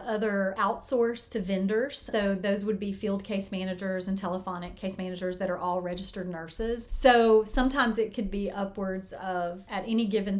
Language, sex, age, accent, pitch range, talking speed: English, female, 30-49, American, 185-220 Hz, 175 wpm